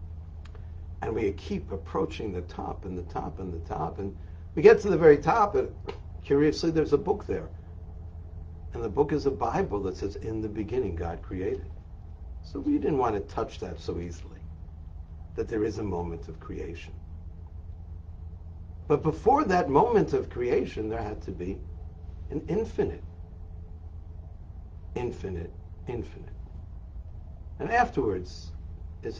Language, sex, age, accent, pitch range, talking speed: English, male, 70-89, American, 80-95 Hz, 145 wpm